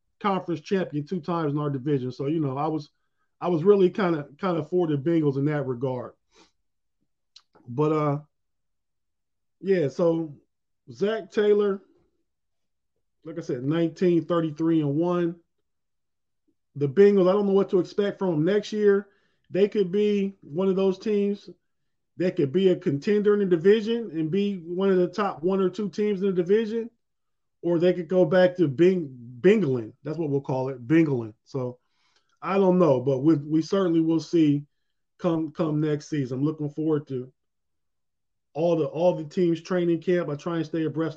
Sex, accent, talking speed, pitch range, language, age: male, American, 180 wpm, 145-190 Hz, English, 20-39